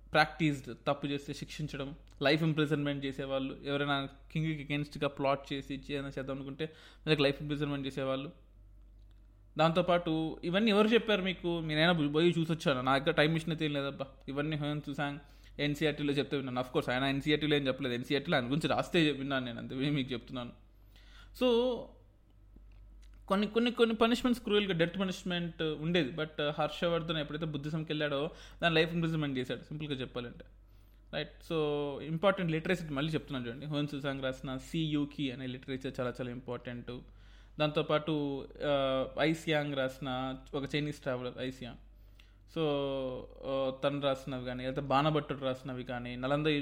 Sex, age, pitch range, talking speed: male, 20-39, 130-155 Hz, 135 wpm